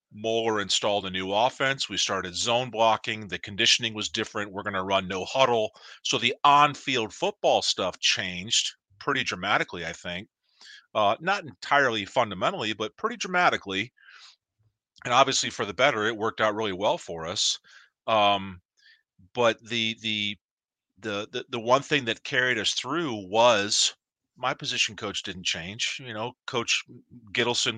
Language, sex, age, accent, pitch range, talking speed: English, male, 40-59, American, 100-125 Hz, 150 wpm